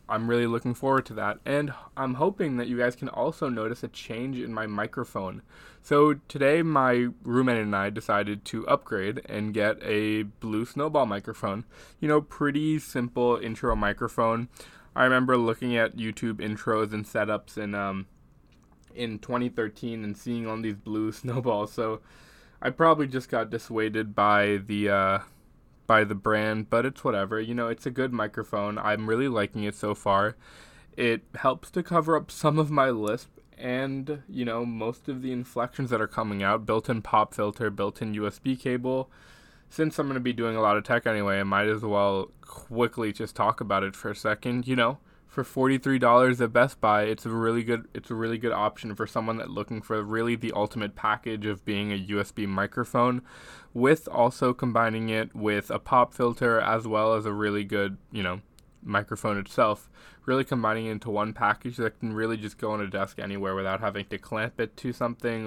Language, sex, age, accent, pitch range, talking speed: English, male, 20-39, American, 105-125 Hz, 190 wpm